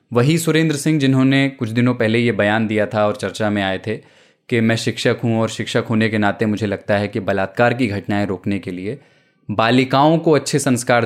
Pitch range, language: 110-140 Hz, Hindi